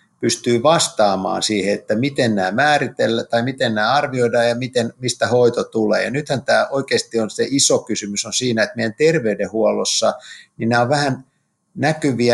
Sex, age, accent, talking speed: male, 50-69, native, 165 wpm